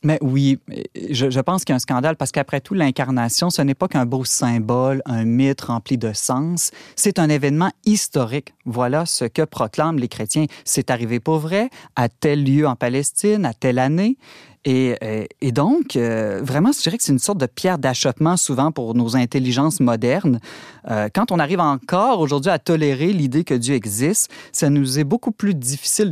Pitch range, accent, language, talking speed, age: 130-175 Hz, Canadian, French, 195 wpm, 30-49